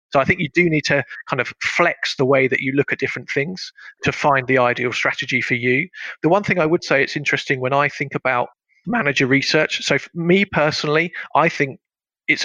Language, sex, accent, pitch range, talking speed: English, male, British, 125-145 Hz, 220 wpm